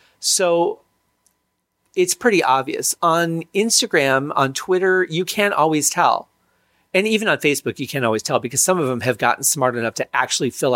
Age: 40-59